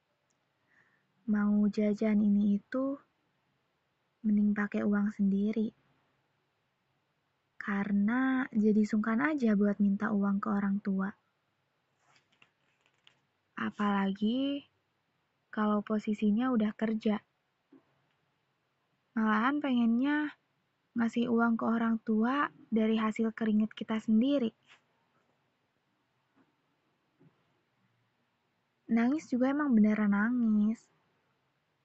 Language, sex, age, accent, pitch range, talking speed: Indonesian, female, 20-39, native, 205-245 Hz, 75 wpm